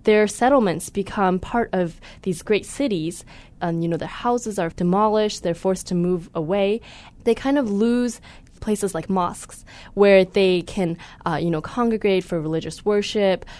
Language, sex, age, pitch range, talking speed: English, female, 10-29, 175-225 Hz, 165 wpm